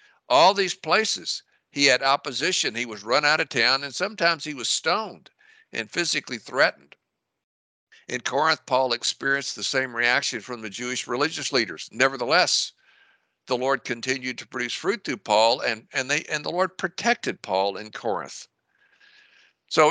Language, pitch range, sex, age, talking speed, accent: English, 120-165 Hz, male, 60-79, 150 wpm, American